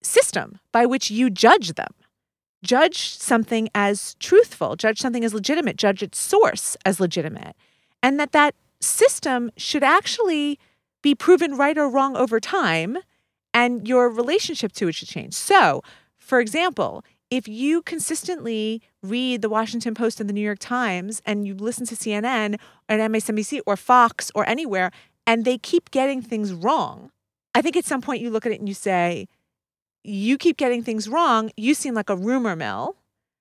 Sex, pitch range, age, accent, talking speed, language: female, 210-290 Hz, 30-49, American, 170 wpm, English